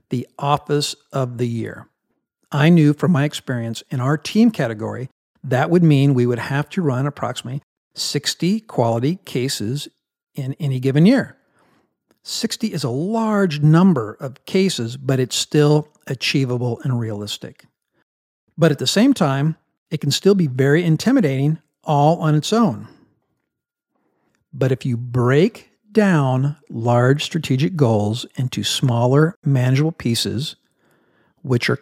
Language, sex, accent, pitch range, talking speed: English, male, American, 125-160 Hz, 135 wpm